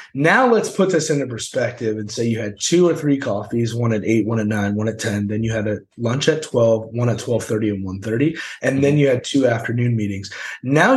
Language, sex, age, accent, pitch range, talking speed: English, male, 20-39, American, 105-130 Hz, 240 wpm